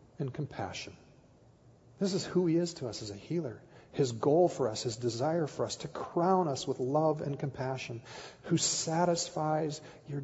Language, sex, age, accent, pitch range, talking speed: English, male, 50-69, American, 115-140 Hz, 175 wpm